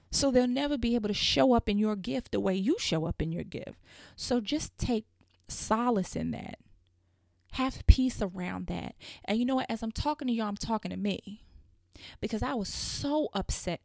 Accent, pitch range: American, 190-240 Hz